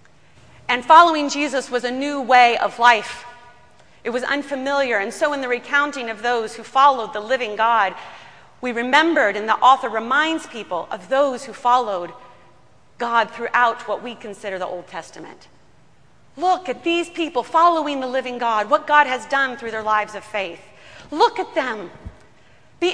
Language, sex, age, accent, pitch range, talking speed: English, female, 30-49, American, 210-290 Hz, 165 wpm